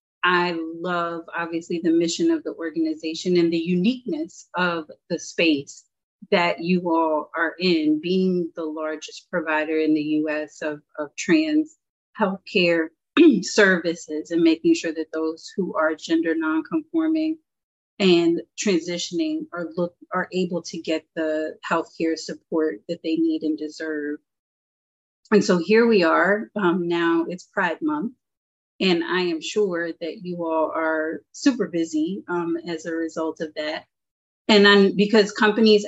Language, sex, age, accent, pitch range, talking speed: English, female, 30-49, American, 165-195 Hz, 145 wpm